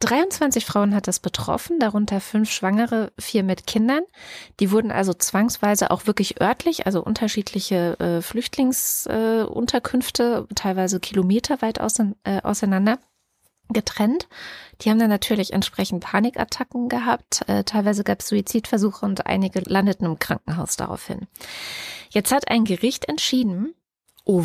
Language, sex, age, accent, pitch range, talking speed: German, female, 20-39, German, 195-245 Hz, 130 wpm